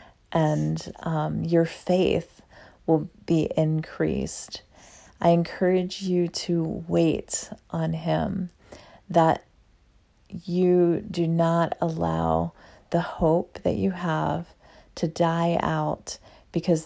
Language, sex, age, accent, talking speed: English, female, 40-59, American, 100 wpm